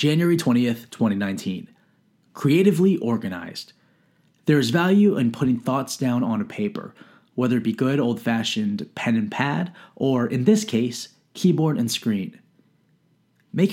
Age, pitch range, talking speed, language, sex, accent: 30-49, 120-195 Hz, 135 wpm, English, male, American